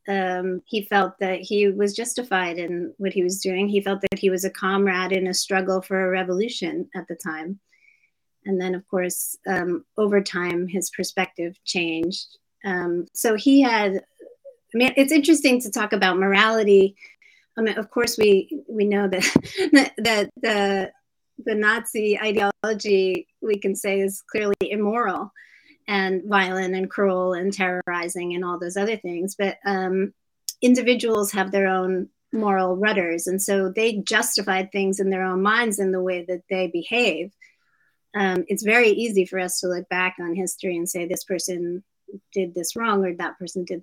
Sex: female